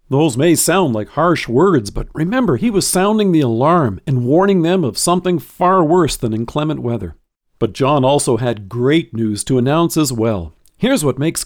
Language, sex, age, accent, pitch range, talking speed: English, male, 50-69, American, 125-175 Hz, 190 wpm